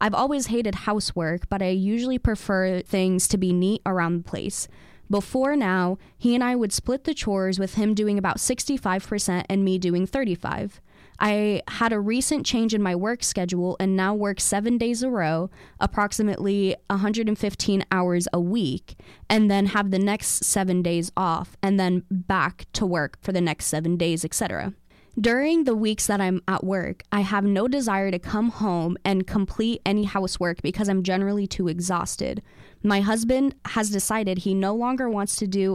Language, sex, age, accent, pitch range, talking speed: English, female, 20-39, American, 185-220 Hz, 180 wpm